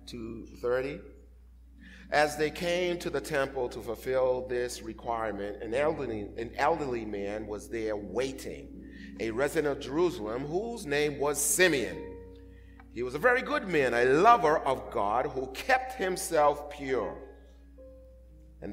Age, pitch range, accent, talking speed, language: 30-49, 115-185 Hz, American, 135 wpm, English